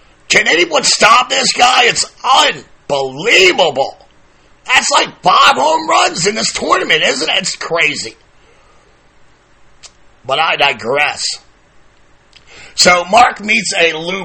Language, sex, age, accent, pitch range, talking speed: English, male, 40-59, American, 155-190 Hz, 115 wpm